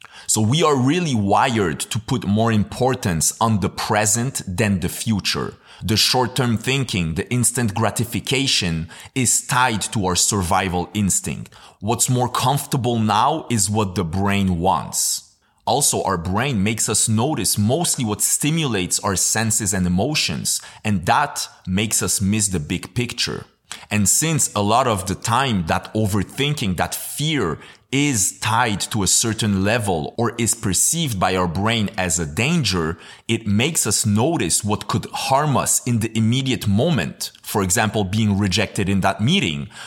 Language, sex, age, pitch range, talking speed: English, male, 30-49, 95-120 Hz, 155 wpm